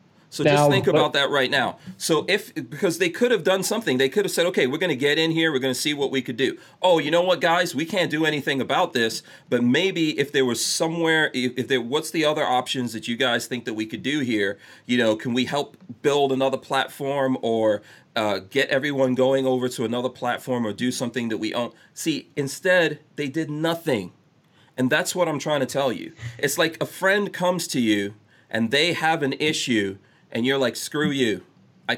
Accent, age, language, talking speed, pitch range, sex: American, 40-59, English, 220 wpm, 120-160 Hz, male